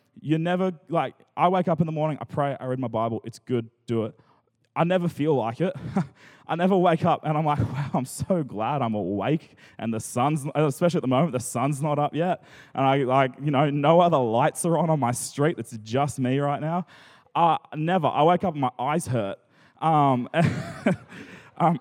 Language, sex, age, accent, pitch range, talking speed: English, male, 20-39, Australian, 130-170 Hz, 215 wpm